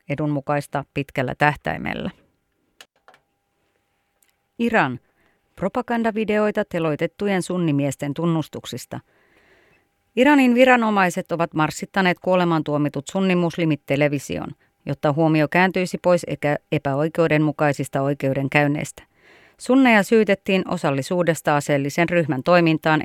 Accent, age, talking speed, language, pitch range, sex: native, 30-49, 75 wpm, Finnish, 145-175 Hz, female